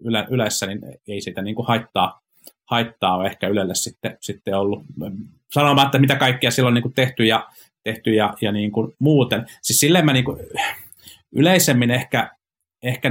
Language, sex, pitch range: Finnish, male, 100-125 Hz